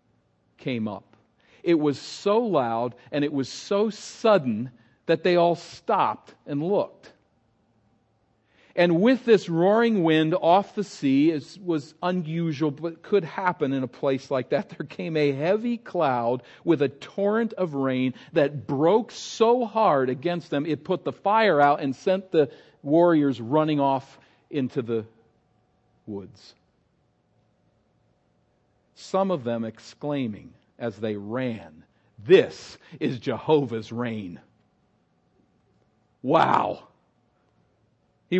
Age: 50-69